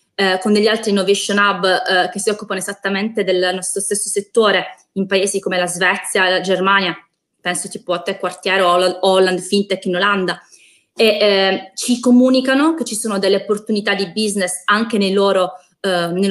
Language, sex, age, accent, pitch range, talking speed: Italian, female, 20-39, native, 190-225 Hz, 175 wpm